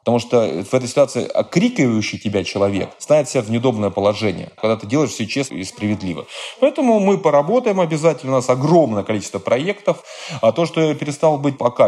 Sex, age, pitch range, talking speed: male, 20-39, 100-150 Hz, 180 wpm